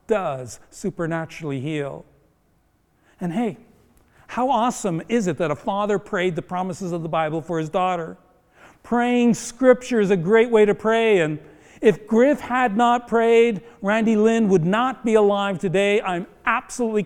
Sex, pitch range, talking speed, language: male, 180-225 Hz, 155 wpm, English